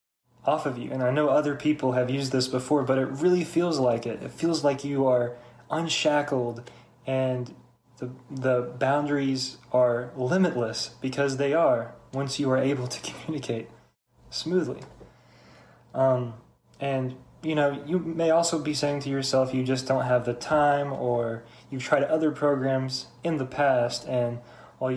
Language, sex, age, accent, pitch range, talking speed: English, male, 20-39, American, 125-145 Hz, 160 wpm